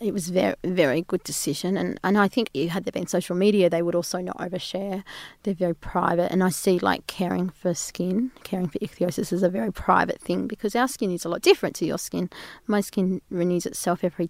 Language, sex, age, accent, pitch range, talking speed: English, female, 20-39, Australian, 175-200 Hz, 225 wpm